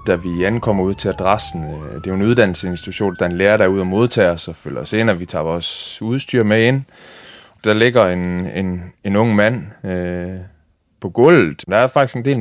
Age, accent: 30-49, native